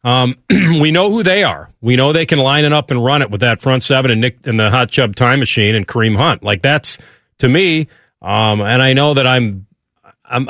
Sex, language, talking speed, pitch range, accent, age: male, English, 240 wpm, 115-150 Hz, American, 40-59